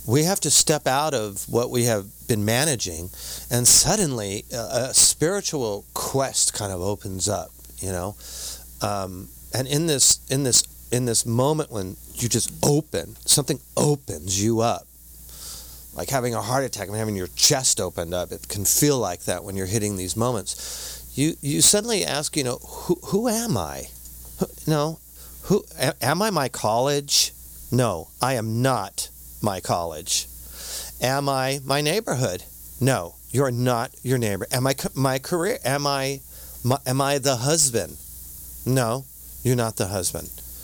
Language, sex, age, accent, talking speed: English, male, 40-59, American, 165 wpm